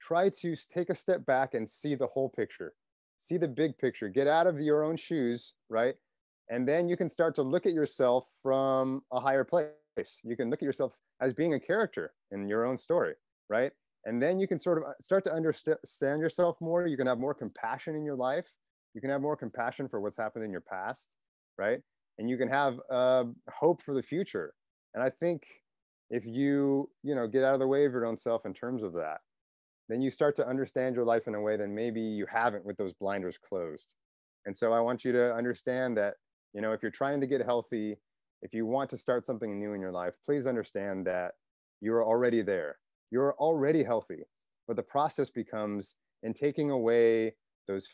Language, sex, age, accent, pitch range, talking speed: English, male, 30-49, American, 115-145 Hz, 215 wpm